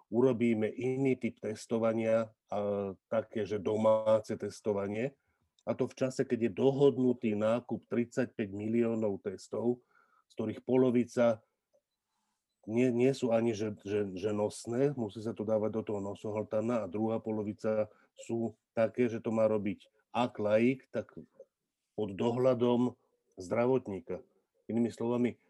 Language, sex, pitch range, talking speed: Slovak, male, 110-130 Hz, 130 wpm